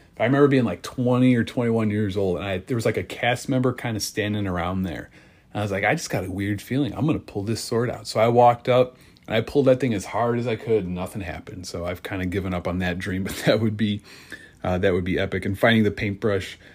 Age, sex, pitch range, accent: 30-49, male, 95-130 Hz, American